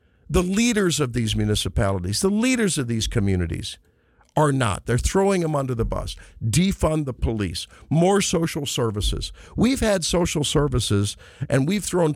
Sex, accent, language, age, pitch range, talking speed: male, American, English, 50-69, 100-145 Hz, 155 wpm